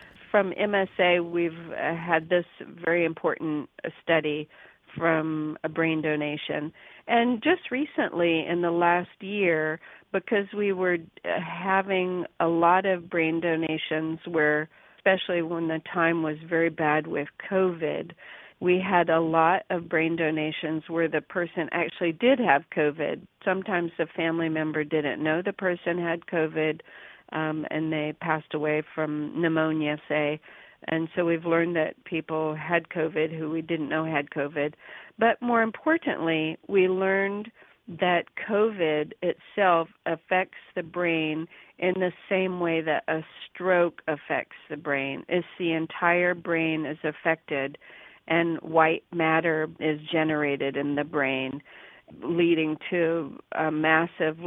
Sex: female